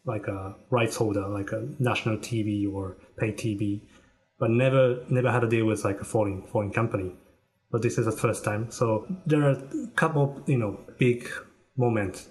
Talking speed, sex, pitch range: 190 wpm, male, 105-125 Hz